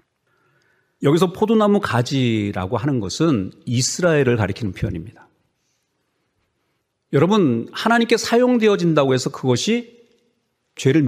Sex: male